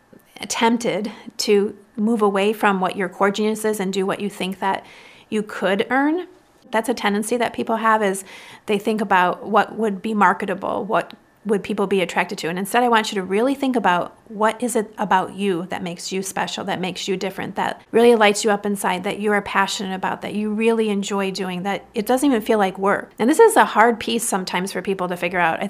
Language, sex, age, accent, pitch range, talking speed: English, female, 30-49, American, 190-225 Hz, 225 wpm